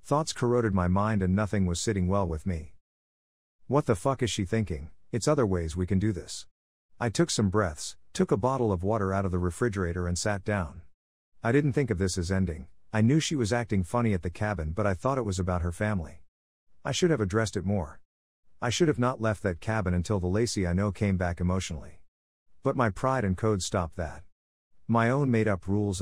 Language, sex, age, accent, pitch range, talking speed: English, male, 50-69, American, 90-115 Hz, 220 wpm